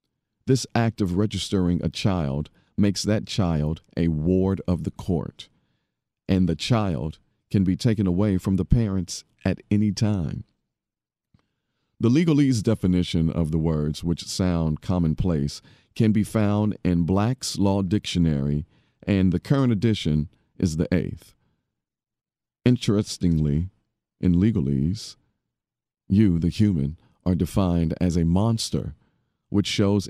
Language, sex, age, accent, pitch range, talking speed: English, male, 50-69, American, 85-105 Hz, 125 wpm